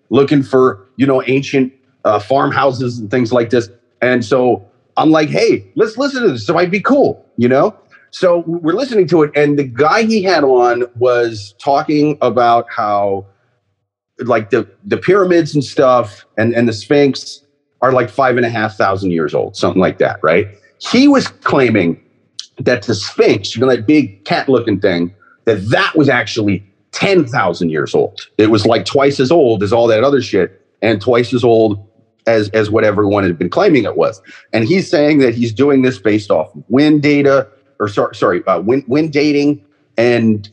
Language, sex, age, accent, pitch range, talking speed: English, male, 40-59, American, 115-150 Hz, 190 wpm